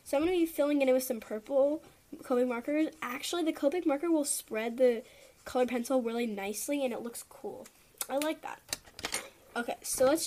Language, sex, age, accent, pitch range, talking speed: English, female, 10-29, American, 225-305 Hz, 200 wpm